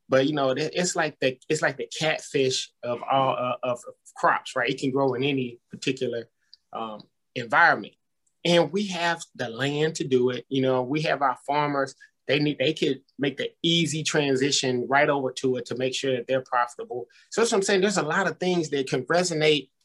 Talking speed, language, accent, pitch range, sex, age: 210 wpm, English, American, 135-195 Hz, male, 20-39